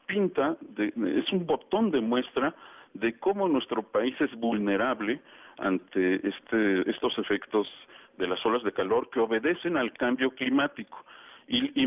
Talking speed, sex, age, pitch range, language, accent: 135 wpm, male, 50-69, 115-150 Hz, Spanish, Mexican